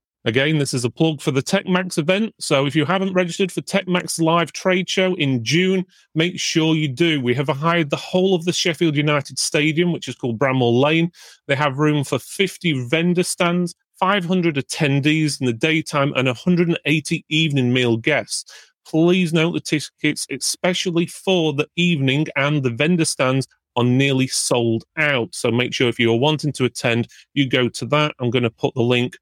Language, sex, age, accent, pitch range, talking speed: English, male, 30-49, British, 130-175 Hz, 185 wpm